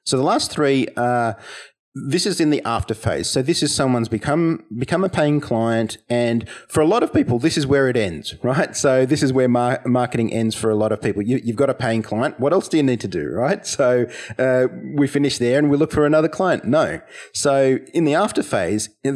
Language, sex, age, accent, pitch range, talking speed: English, male, 30-49, Australian, 105-130 Hz, 240 wpm